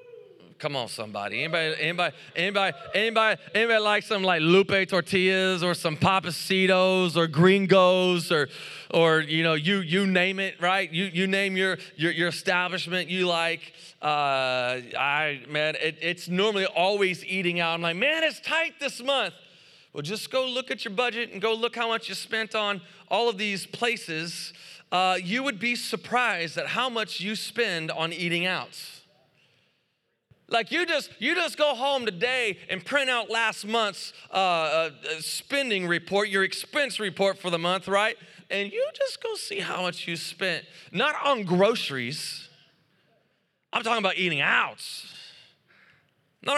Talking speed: 160 wpm